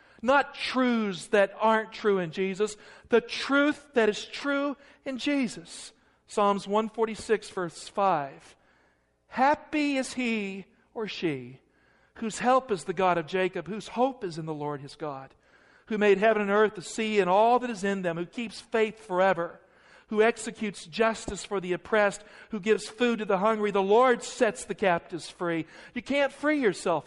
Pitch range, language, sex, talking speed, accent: 185-240 Hz, English, male, 175 wpm, American